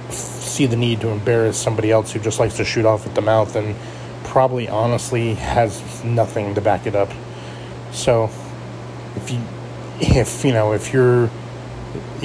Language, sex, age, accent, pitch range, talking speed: English, male, 20-39, American, 110-125 Hz, 160 wpm